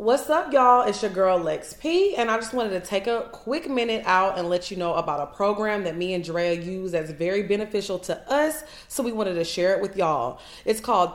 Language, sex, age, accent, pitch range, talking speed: English, female, 30-49, American, 175-225 Hz, 240 wpm